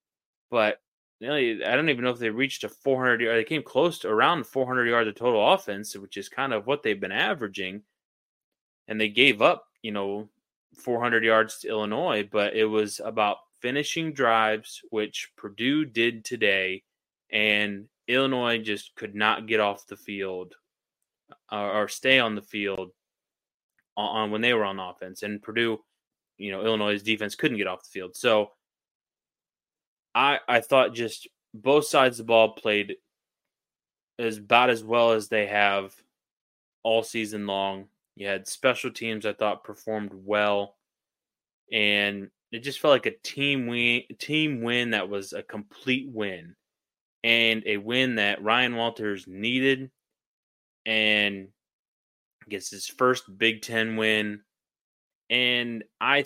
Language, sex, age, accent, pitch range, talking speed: English, male, 20-39, American, 105-120 Hz, 155 wpm